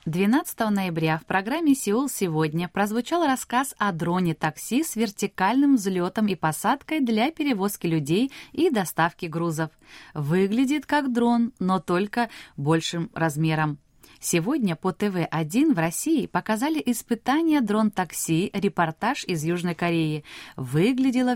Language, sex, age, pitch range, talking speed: Russian, female, 20-39, 165-235 Hz, 120 wpm